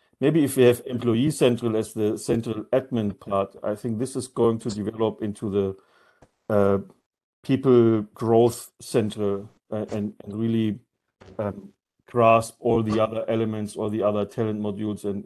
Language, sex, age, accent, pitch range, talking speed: English, male, 50-69, German, 100-115 Hz, 155 wpm